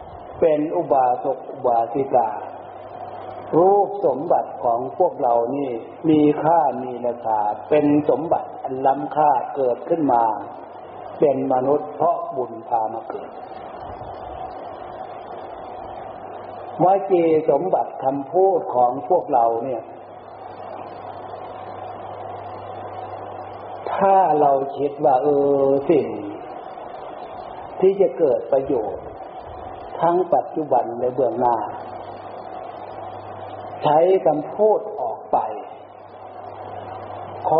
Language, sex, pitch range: Thai, male, 135-215 Hz